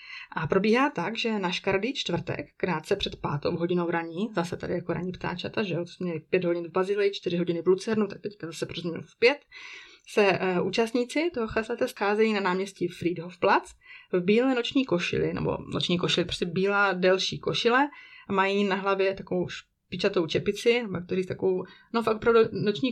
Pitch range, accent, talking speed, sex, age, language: 175-200 Hz, native, 175 wpm, female, 20-39, Czech